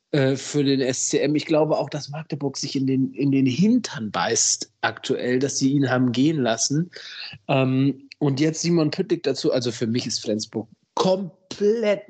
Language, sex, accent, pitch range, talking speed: German, male, German, 125-150 Hz, 165 wpm